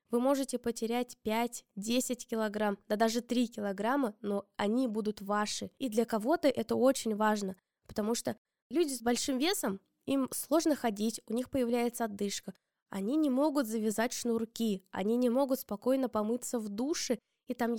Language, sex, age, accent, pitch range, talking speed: Russian, female, 20-39, native, 205-255 Hz, 155 wpm